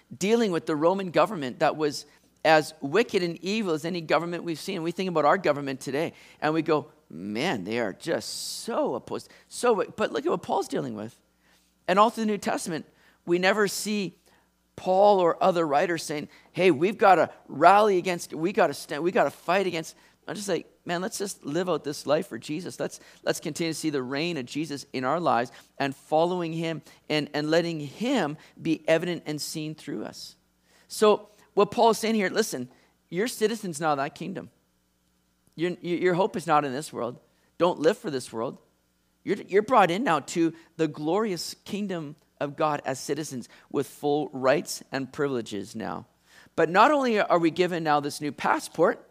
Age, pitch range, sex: 40-59, 140-180 Hz, male